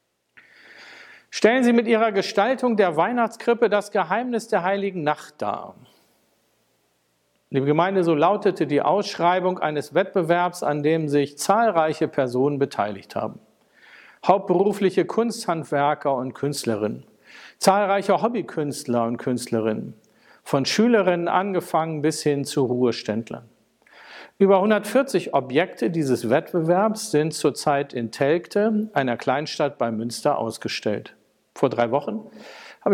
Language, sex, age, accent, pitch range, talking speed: German, male, 50-69, German, 140-195 Hz, 110 wpm